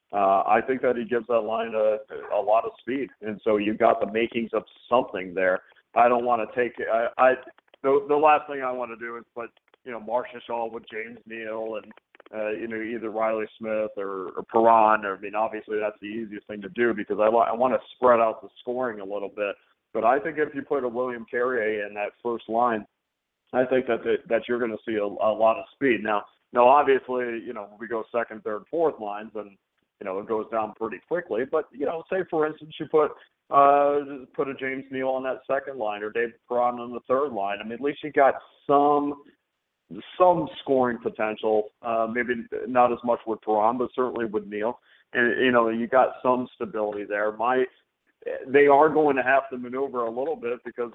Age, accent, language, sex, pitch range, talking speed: 50-69, American, English, male, 110-130 Hz, 225 wpm